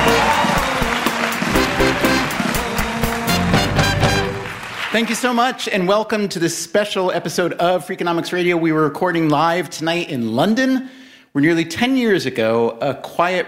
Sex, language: male, English